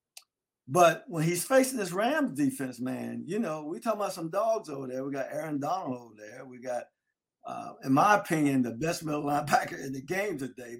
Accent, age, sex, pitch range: American, 50-69, male, 140-220 Hz